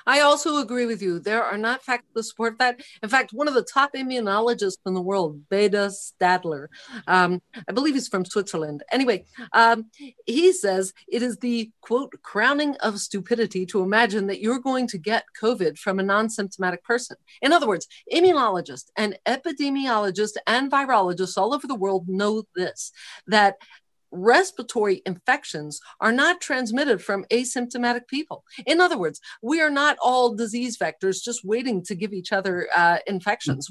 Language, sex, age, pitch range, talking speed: English, female, 40-59, 195-245 Hz, 165 wpm